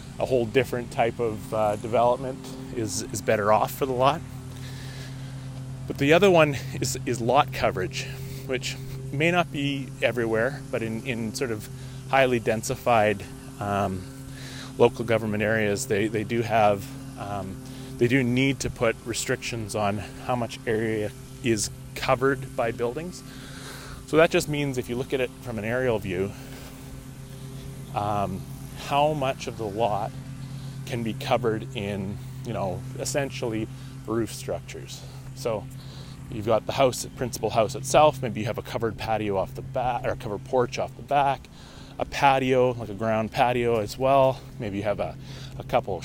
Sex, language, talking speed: male, English, 160 wpm